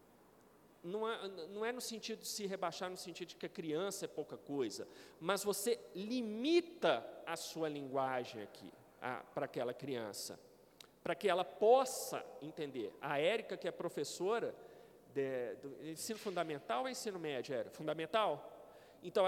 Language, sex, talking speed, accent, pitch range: Portuguese, male, 145 wpm, Brazilian, 165-245 Hz